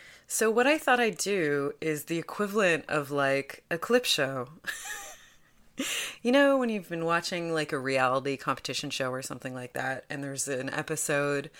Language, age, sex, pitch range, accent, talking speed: English, 30-49, female, 140-185 Hz, American, 170 wpm